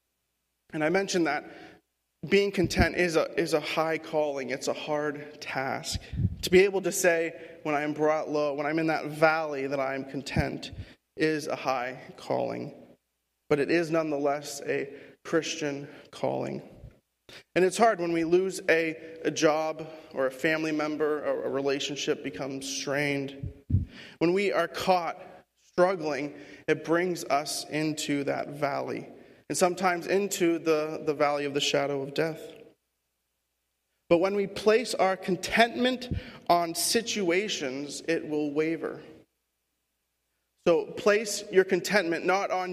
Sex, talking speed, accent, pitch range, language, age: male, 145 wpm, American, 140-175 Hz, English, 30-49